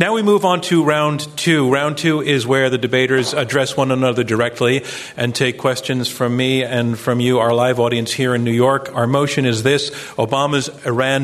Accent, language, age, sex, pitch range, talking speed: American, English, 40-59, male, 125-150 Hz, 205 wpm